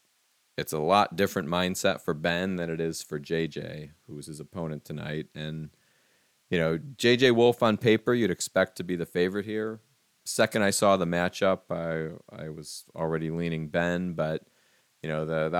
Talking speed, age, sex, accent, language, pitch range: 180 wpm, 30-49, male, American, English, 80-100 Hz